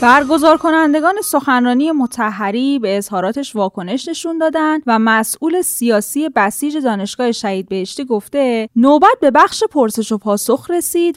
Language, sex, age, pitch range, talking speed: Persian, female, 10-29, 205-305 Hz, 125 wpm